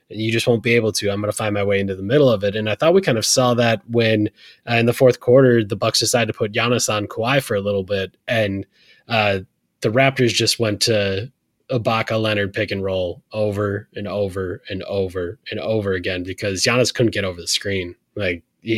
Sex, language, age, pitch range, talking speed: male, English, 20-39, 105-125 Hz, 230 wpm